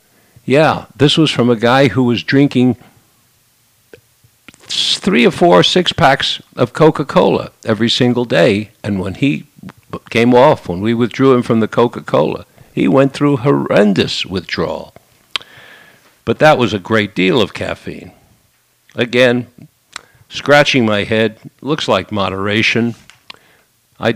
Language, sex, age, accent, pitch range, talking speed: English, male, 50-69, American, 105-135 Hz, 125 wpm